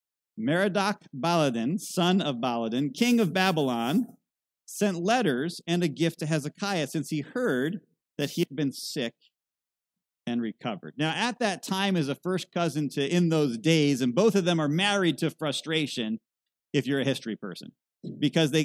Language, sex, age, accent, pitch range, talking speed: English, male, 40-59, American, 120-170 Hz, 165 wpm